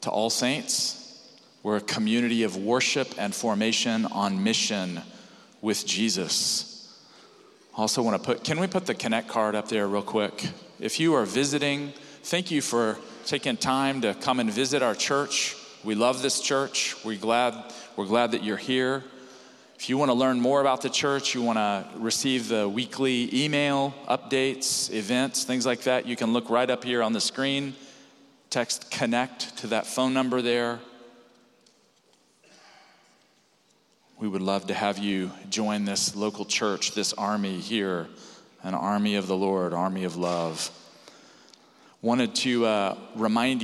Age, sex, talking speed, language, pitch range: 40-59, male, 155 wpm, English, 110-135 Hz